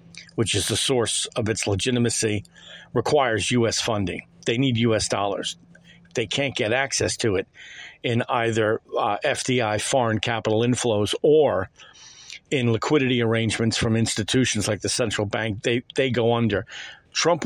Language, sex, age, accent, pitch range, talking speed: English, male, 50-69, American, 115-160 Hz, 145 wpm